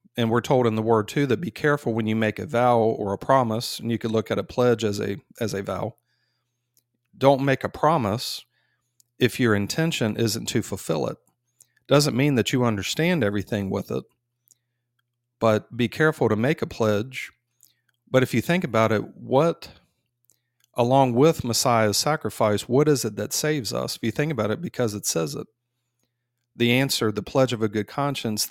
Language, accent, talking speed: English, American, 185 wpm